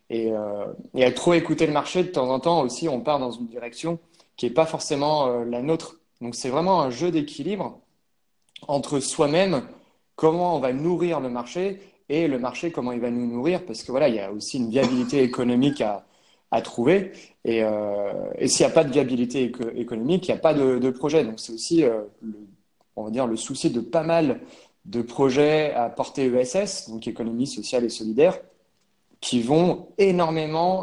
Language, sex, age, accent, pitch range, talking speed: French, male, 30-49, French, 120-160 Hz, 200 wpm